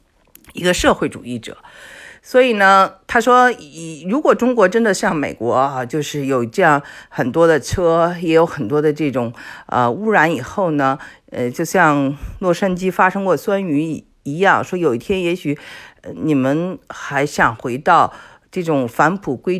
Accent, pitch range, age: native, 135-190 Hz, 50-69